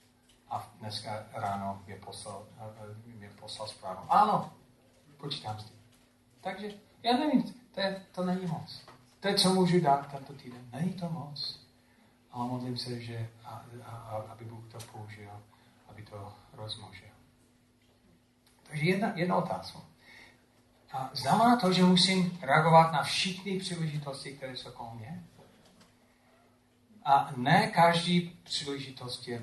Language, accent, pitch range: Czech, native, 120-175 Hz